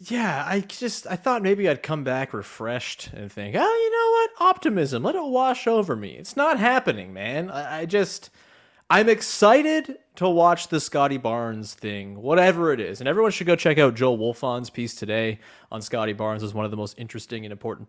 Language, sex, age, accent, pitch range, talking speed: English, male, 30-49, American, 110-180 Hz, 200 wpm